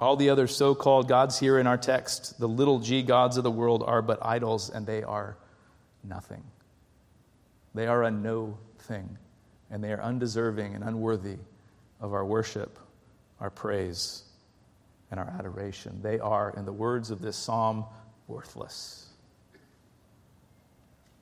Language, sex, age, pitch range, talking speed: English, male, 40-59, 110-140 Hz, 145 wpm